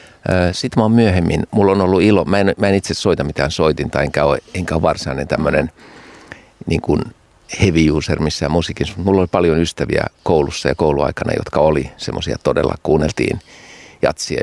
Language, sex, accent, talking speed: Finnish, male, native, 165 wpm